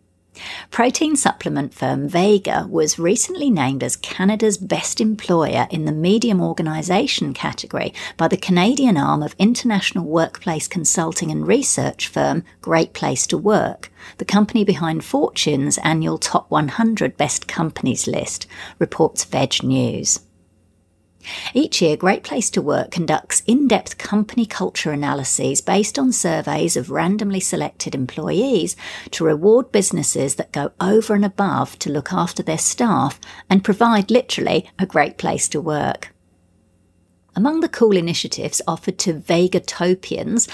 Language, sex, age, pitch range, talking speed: English, female, 50-69, 150-210 Hz, 135 wpm